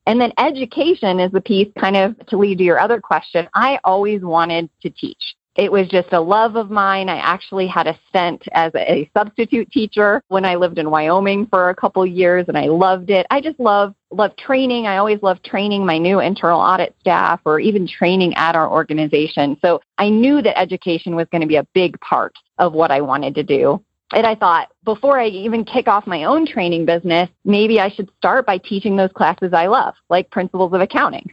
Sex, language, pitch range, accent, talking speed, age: female, English, 170-210 Hz, American, 215 wpm, 30-49